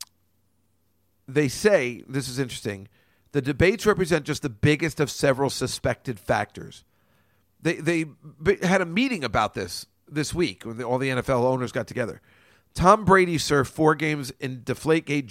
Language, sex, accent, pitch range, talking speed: English, male, American, 110-170 Hz, 150 wpm